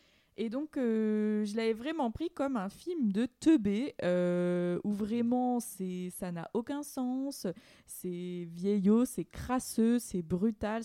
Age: 20-39